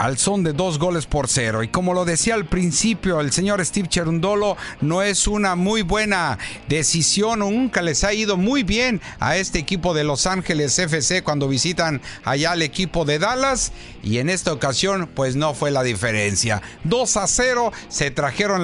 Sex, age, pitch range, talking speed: male, 50-69, 140-205 Hz, 185 wpm